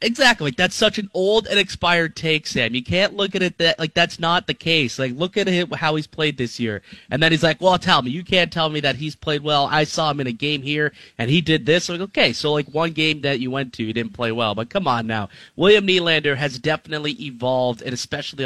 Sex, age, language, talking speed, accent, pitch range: male, 30-49, English, 265 wpm, American, 130-170 Hz